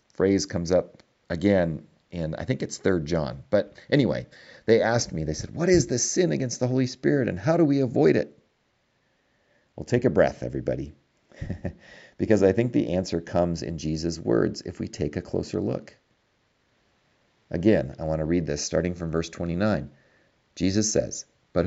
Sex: male